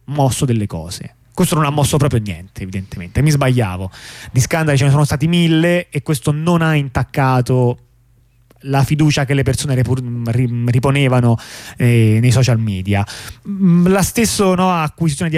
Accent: native